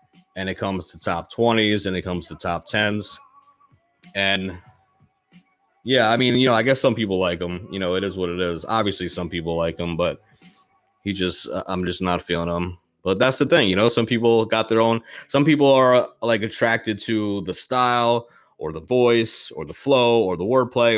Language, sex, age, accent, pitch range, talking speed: English, male, 30-49, American, 90-110 Hz, 210 wpm